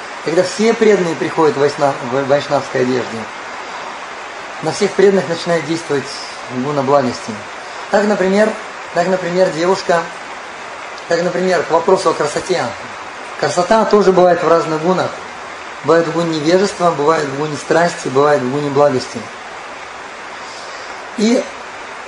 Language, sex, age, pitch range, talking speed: Russian, male, 30-49, 135-175 Hz, 120 wpm